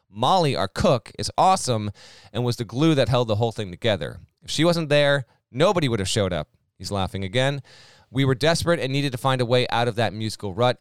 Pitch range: 100-140 Hz